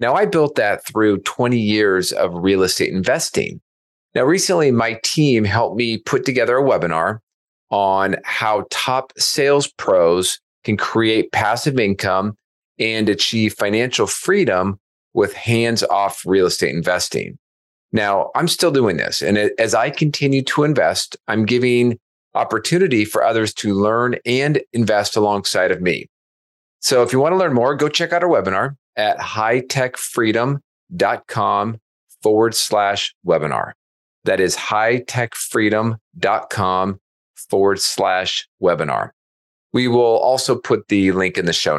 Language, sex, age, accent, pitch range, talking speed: English, male, 40-59, American, 95-120 Hz, 135 wpm